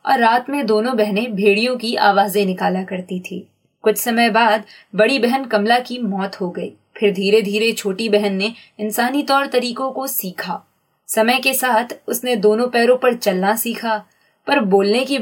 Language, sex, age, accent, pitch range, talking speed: Hindi, female, 20-39, native, 200-255 Hz, 175 wpm